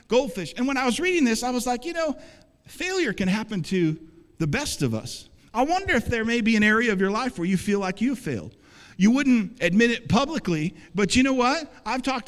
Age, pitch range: 50-69, 145-220 Hz